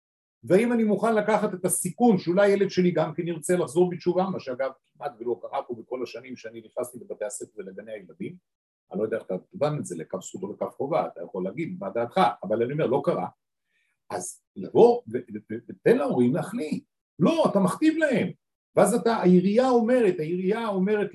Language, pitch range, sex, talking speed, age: Hebrew, 150-215 Hz, male, 185 wpm, 50-69